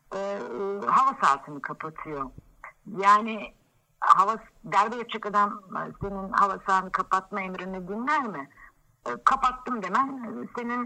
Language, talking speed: Turkish, 110 wpm